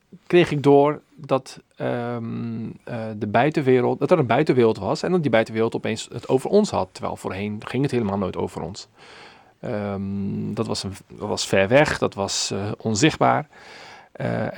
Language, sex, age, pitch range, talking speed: Dutch, male, 40-59, 105-135 Hz, 175 wpm